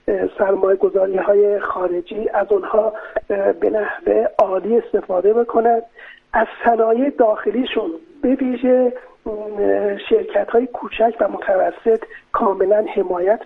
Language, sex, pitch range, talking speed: Persian, male, 210-280 Hz, 95 wpm